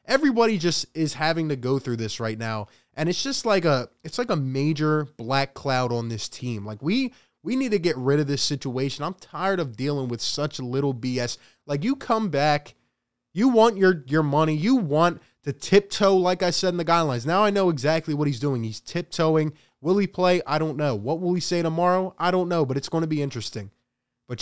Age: 20-39